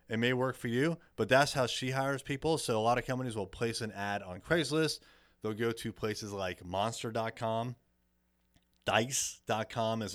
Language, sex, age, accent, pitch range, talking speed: English, male, 30-49, American, 105-135 Hz, 175 wpm